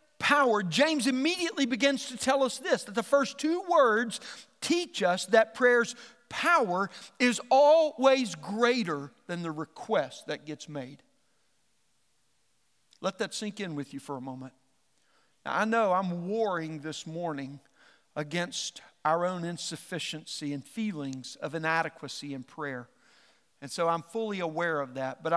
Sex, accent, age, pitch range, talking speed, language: male, American, 50-69, 150-225 Hz, 145 wpm, English